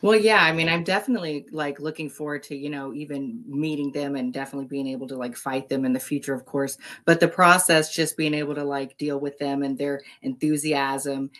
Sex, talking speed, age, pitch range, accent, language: female, 220 wpm, 30-49, 140-155 Hz, American, English